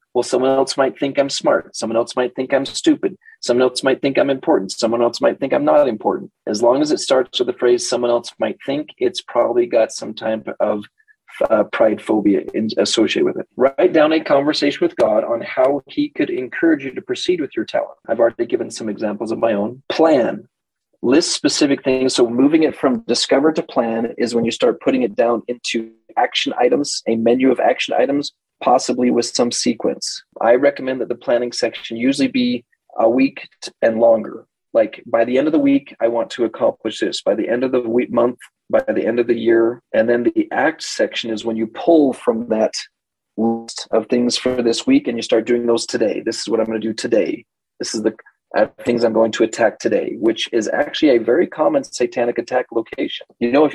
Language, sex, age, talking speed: English, male, 30-49, 220 wpm